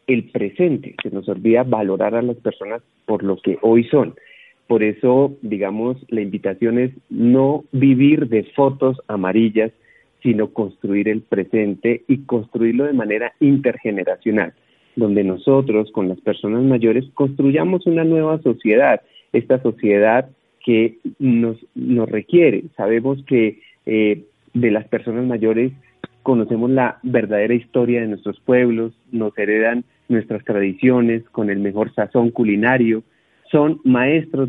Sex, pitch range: male, 105-125 Hz